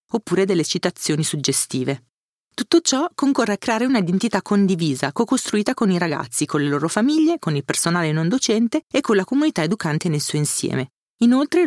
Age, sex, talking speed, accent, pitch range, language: 40-59, female, 170 wpm, native, 160-215 Hz, Italian